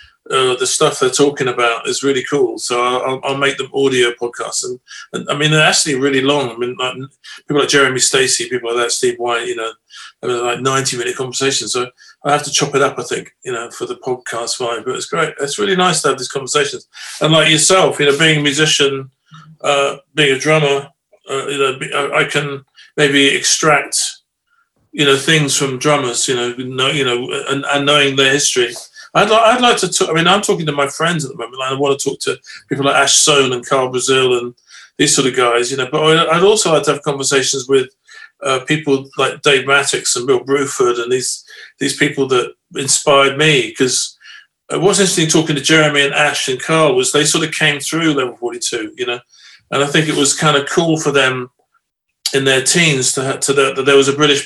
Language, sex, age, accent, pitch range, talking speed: English, male, 40-59, British, 135-175 Hz, 225 wpm